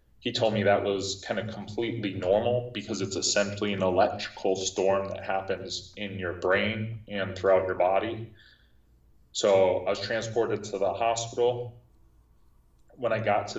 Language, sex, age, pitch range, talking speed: English, male, 30-49, 95-110 Hz, 155 wpm